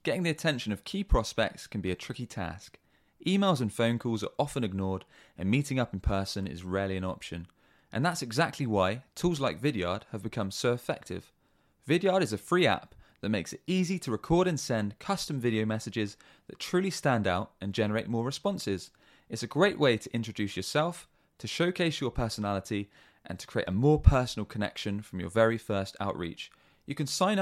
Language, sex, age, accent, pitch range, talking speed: English, male, 20-39, British, 100-165 Hz, 195 wpm